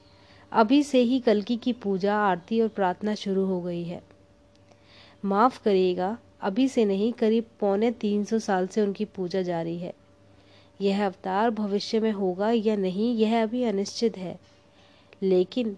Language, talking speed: Hindi, 150 wpm